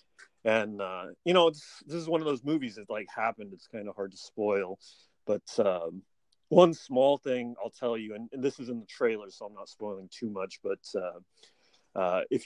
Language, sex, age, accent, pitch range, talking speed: English, male, 40-59, American, 105-130 Hz, 215 wpm